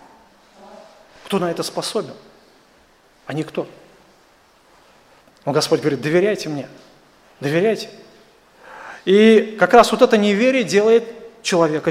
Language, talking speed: Russian, 100 wpm